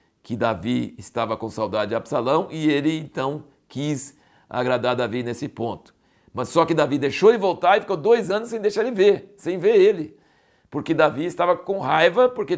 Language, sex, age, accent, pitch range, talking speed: Portuguese, male, 60-79, Brazilian, 130-185 Hz, 185 wpm